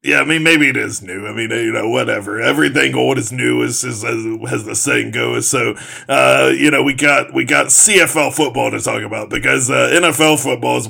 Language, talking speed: English, 230 wpm